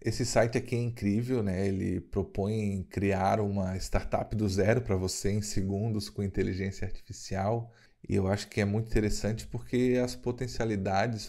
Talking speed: 160 wpm